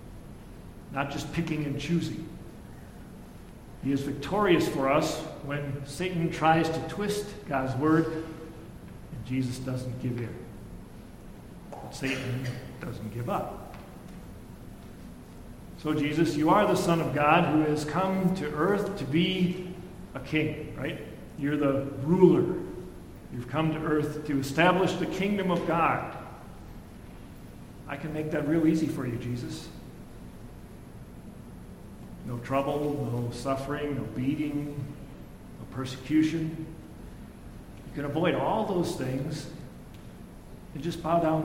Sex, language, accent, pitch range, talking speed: male, English, American, 140-175 Hz, 120 wpm